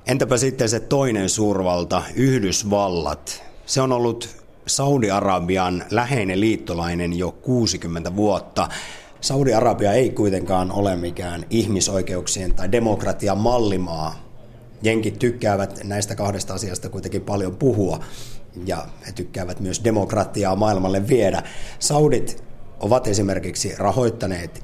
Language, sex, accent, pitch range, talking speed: Finnish, male, native, 90-115 Hz, 105 wpm